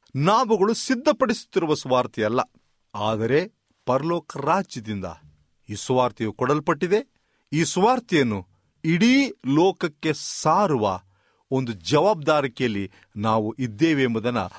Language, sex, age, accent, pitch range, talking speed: Kannada, male, 40-59, native, 110-180 Hz, 75 wpm